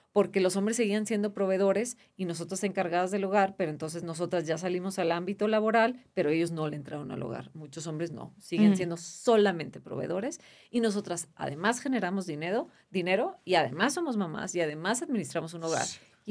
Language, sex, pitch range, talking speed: Spanish, female, 170-205 Hz, 180 wpm